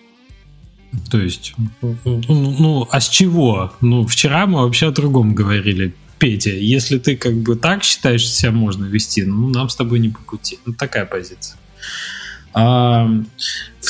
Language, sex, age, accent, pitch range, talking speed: Russian, male, 20-39, native, 110-135 Hz, 155 wpm